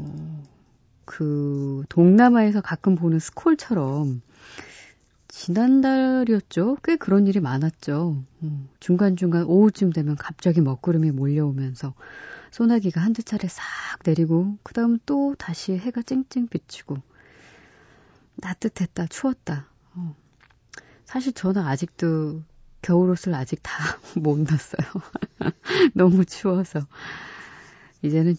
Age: 30-49